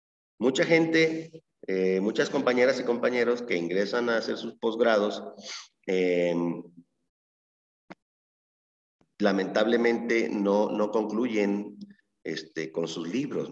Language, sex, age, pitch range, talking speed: Spanish, male, 40-59, 95-120 Hz, 100 wpm